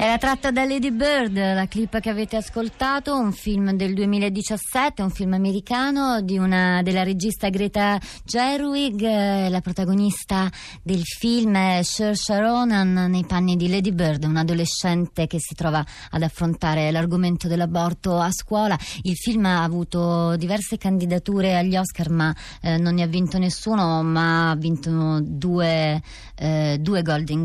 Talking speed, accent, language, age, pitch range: 150 wpm, native, Italian, 30-49, 175-215 Hz